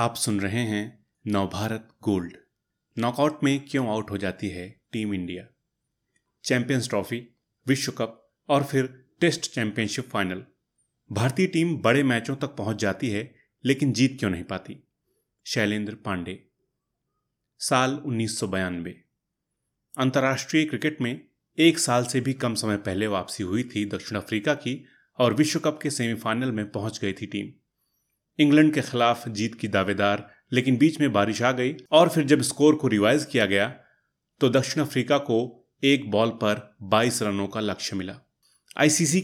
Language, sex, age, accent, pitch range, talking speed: Hindi, male, 30-49, native, 105-140 Hz, 155 wpm